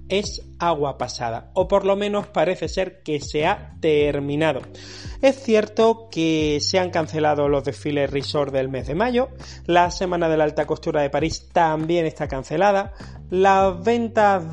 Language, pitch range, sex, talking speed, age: Spanish, 145-190 Hz, male, 160 wpm, 30-49